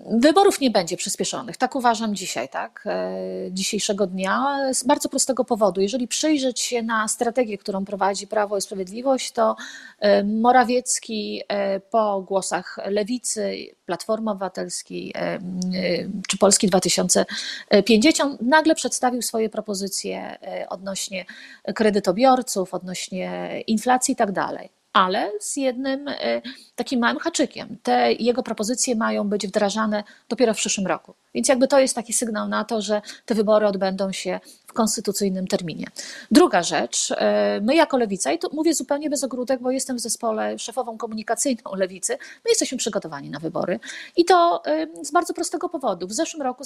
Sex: female